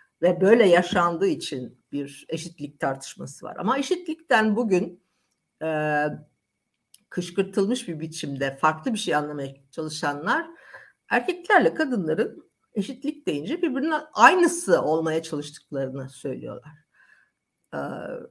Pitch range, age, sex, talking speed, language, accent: 160-220 Hz, 50-69, female, 100 wpm, Turkish, native